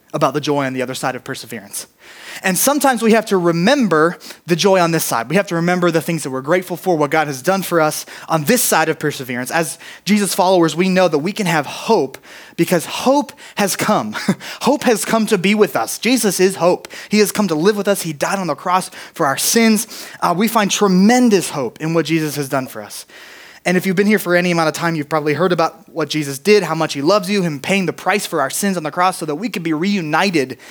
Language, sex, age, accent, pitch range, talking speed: English, male, 20-39, American, 160-215 Hz, 255 wpm